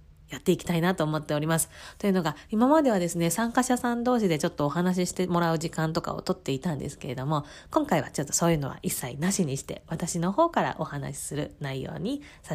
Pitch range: 165-255 Hz